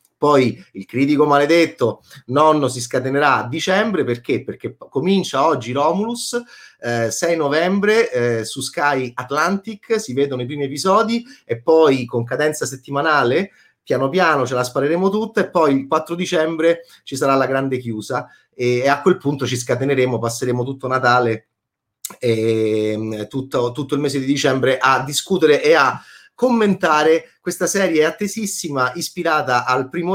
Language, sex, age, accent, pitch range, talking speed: Italian, male, 30-49, native, 125-185 Hz, 150 wpm